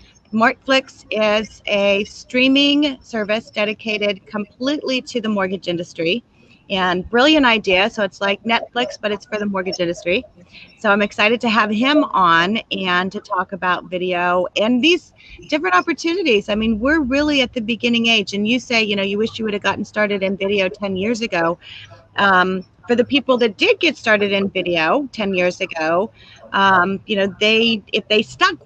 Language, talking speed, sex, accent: English, 180 wpm, female, American